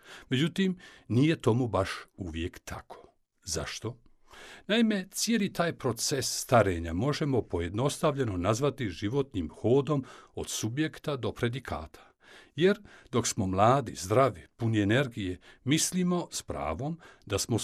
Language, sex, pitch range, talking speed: Croatian, male, 100-150 Hz, 110 wpm